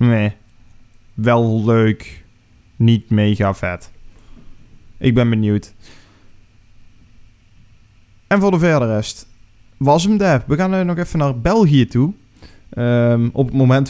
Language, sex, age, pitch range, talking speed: Dutch, male, 20-39, 110-150 Hz, 120 wpm